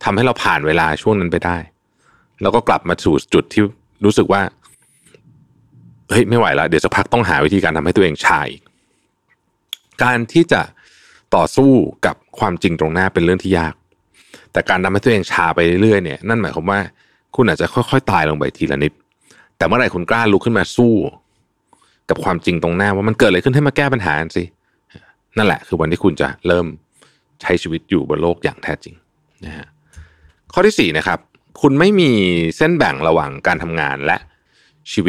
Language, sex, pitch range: Thai, male, 80-120 Hz